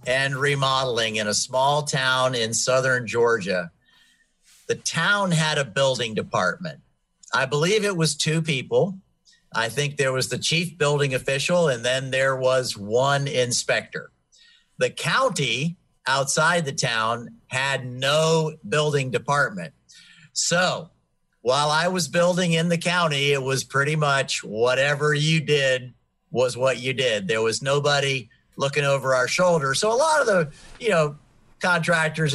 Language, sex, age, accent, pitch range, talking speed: English, male, 50-69, American, 130-160 Hz, 145 wpm